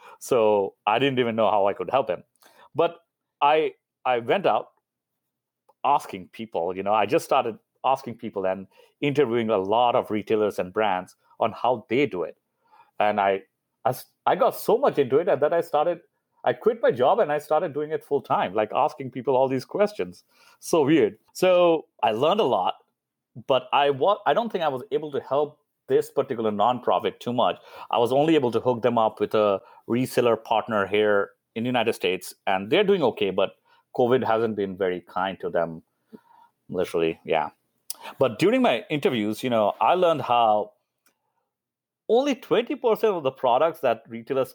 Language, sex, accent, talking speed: English, male, Indian, 180 wpm